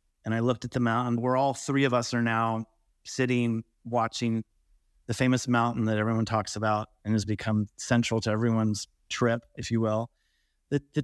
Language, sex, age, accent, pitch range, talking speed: English, male, 30-49, American, 105-125 Hz, 185 wpm